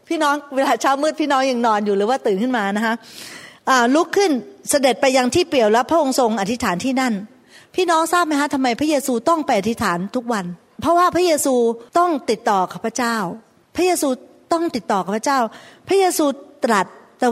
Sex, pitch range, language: female, 225-305 Hz, Thai